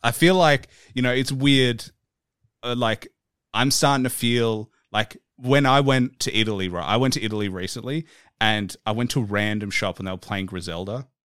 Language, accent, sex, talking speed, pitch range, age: English, Australian, male, 195 wpm, 100-130 Hz, 30-49